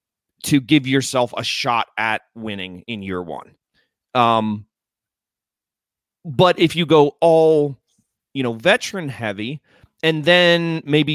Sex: male